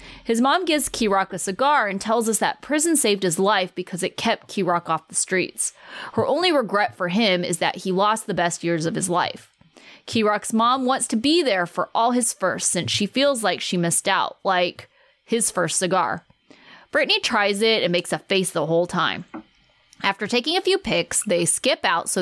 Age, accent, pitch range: 20-39, American, 180-235 Hz